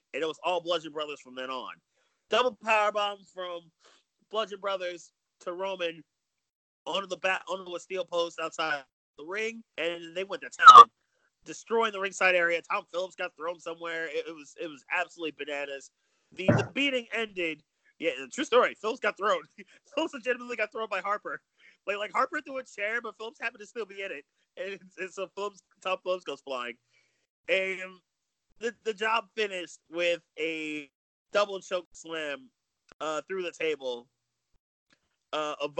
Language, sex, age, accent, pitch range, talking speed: English, male, 30-49, American, 160-210 Hz, 170 wpm